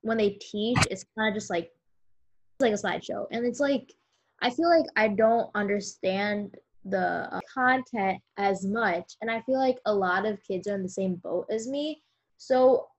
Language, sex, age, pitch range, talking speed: English, female, 10-29, 190-245 Hz, 190 wpm